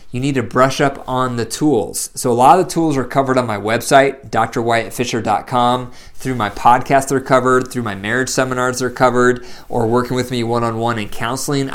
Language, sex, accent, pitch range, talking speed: English, male, American, 120-150 Hz, 195 wpm